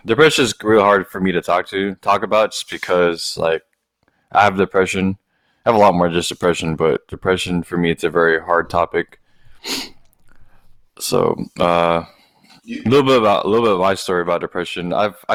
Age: 20-39